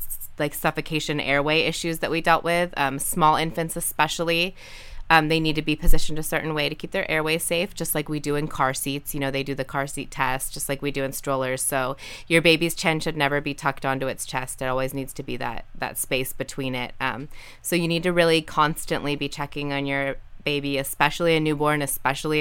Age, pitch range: 20-39, 135-155 Hz